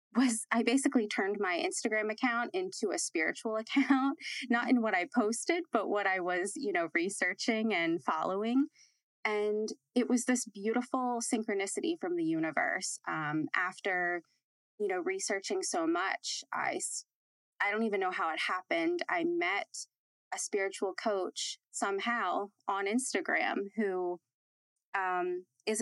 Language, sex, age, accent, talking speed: English, female, 20-39, American, 140 wpm